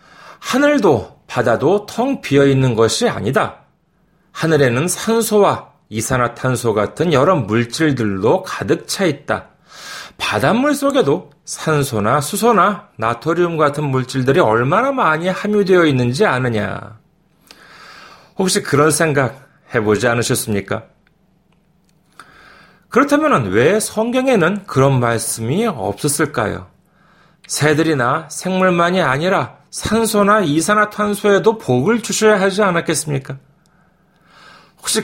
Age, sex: 40-59, male